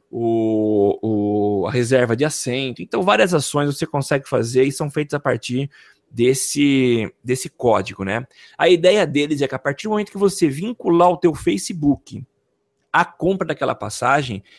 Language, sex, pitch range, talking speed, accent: Portuguese, male, 125-175 Hz, 165 wpm, Brazilian